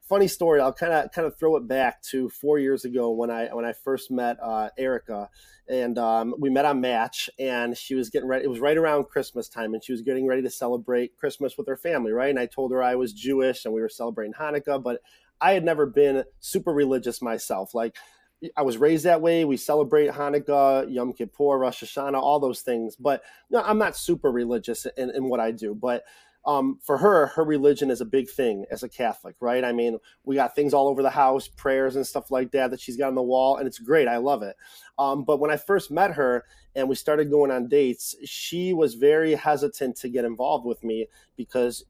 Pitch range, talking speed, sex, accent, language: 125-145 Hz, 230 wpm, male, American, English